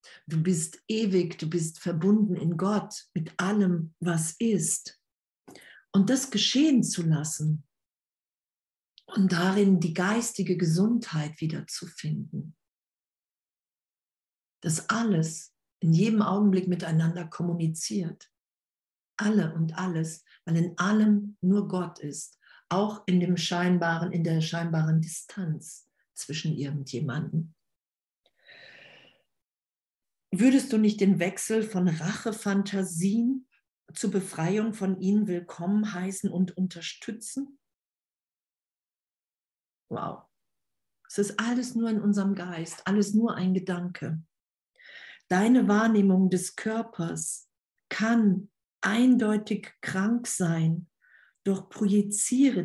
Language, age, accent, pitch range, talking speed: German, 50-69, German, 165-210 Hz, 100 wpm